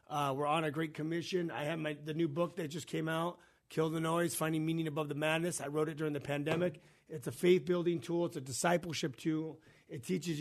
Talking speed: 230 wpm